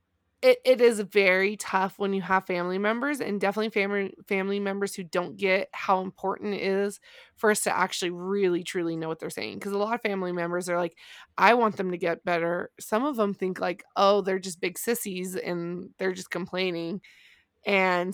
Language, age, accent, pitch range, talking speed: English, 20-39, American, 175-205 Hz, 200 wpm